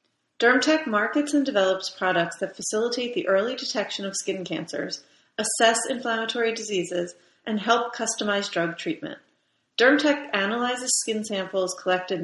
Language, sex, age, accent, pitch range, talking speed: English, female, 30-49, American, 185-235 Hz, 125 wpm